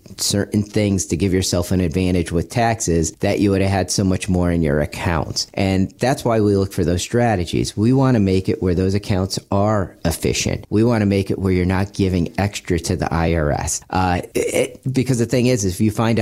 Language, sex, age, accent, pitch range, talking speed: English, male, 40-59, American, 90-115 Hz, 220 wpm